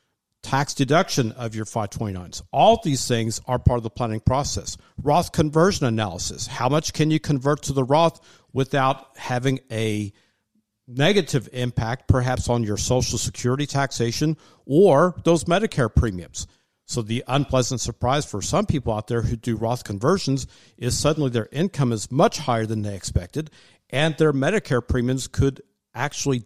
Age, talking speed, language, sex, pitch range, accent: 50-69, 155 wpm, English, male, 115-145 Hz, American